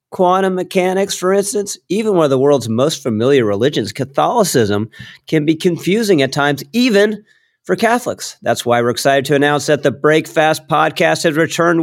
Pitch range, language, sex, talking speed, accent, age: 115-160 Hz, English, male, 165 wpm, American, 40-59